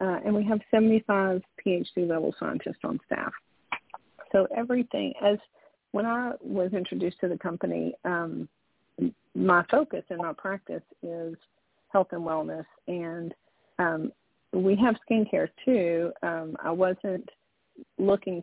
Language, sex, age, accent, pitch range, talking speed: English, female, 40-59, American, 165-200 Hz, 130 wpm